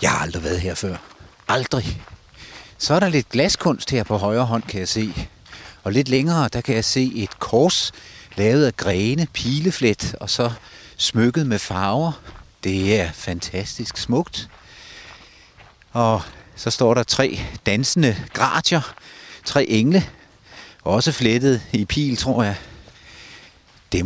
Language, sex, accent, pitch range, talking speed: Danish, male, native, 100-130 Hz, 140 wpm